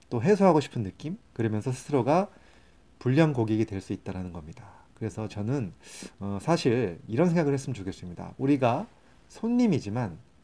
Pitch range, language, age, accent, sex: 100-145 Hz, Korean, 30-49, native, male